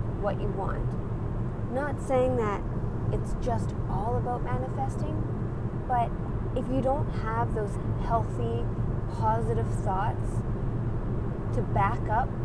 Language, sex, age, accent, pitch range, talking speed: English, female, 20-39, American, 115-120 Hz, 110 wpm